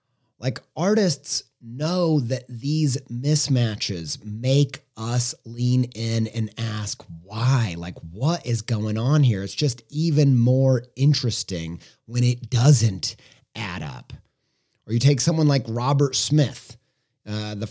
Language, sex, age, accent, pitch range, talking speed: English, male, 30-49, American, 130-180 Hz, 130 wpm